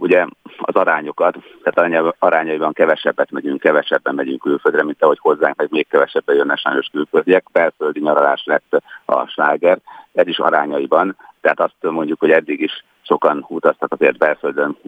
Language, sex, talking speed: Hungarian, male, 150 wpm